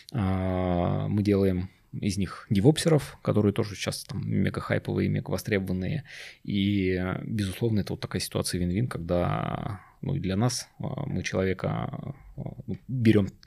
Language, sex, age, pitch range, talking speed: Russian, male, 20-39, 100-120 Hz, 120 wpm